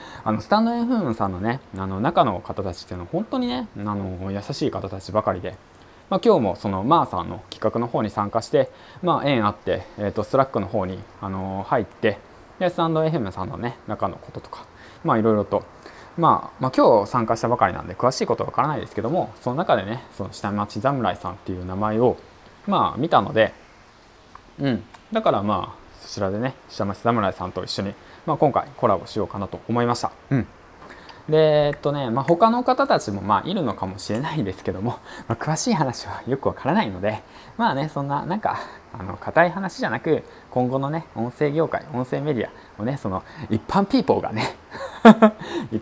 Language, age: Japanese, 20-39